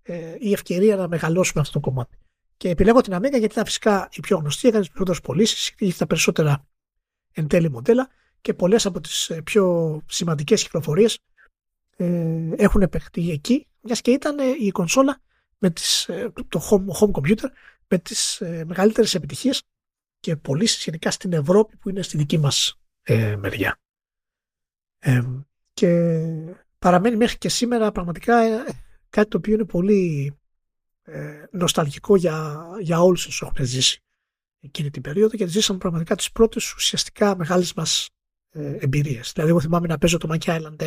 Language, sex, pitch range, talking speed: Greek, male, 160-210 Hz, 155 wpm